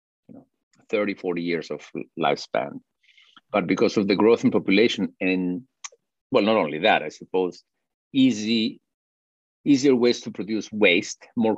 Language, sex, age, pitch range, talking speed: English, male, 50-69, 85-125 Hz, 135 wpm